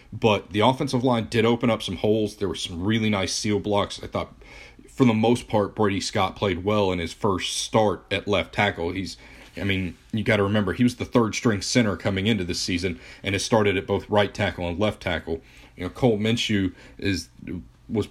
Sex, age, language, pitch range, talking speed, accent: male, 40-59, English, 90-115 Hz, 215 wpm, American